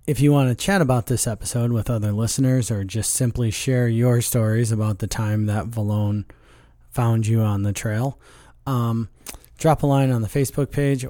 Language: English